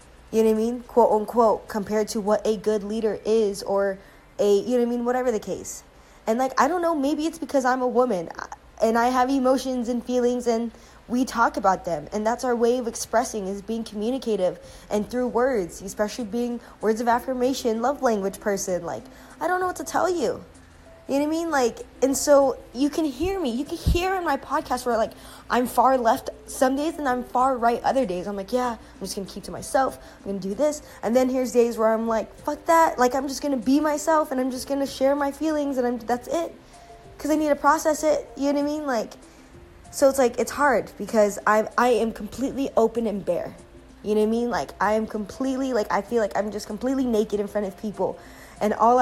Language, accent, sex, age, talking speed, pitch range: English, American, female, 20-39, 240 wpm, 215-270 Hz